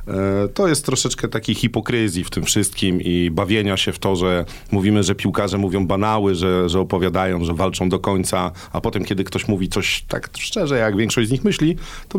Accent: native